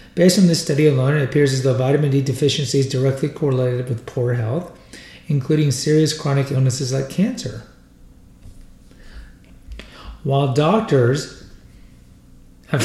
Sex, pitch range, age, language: male, 130-150 Hz, 40-59, English